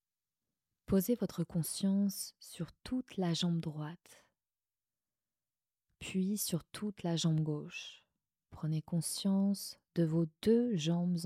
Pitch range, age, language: 150-185 Hz, 20-39, French